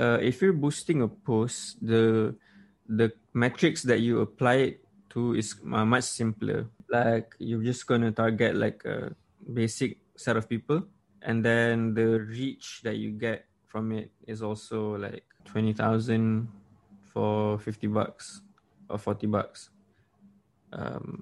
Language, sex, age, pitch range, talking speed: English, male, 20-39, 110-120 Hz, 140 wpm